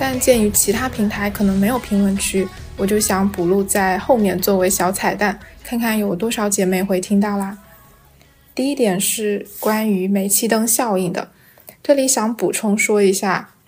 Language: Chinese